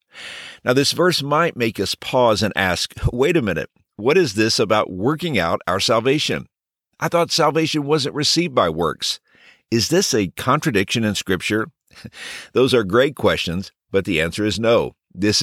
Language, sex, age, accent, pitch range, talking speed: English, male, 50-69, American, 95-140 Hz, 165 wpm